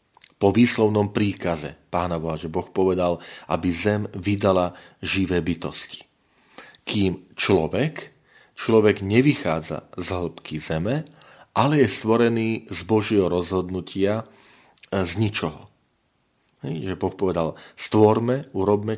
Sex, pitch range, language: male, 90-115 Hz, Slovak